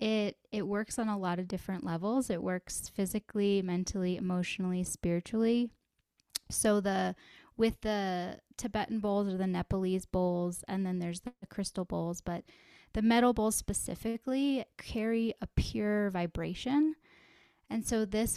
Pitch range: 185-215 Hz